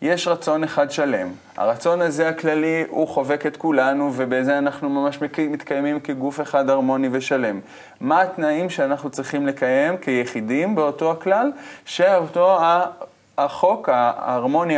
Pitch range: 130-170 Hz